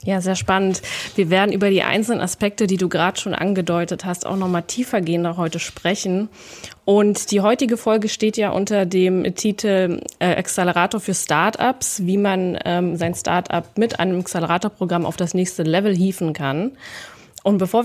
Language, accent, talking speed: German, German, 165 wpm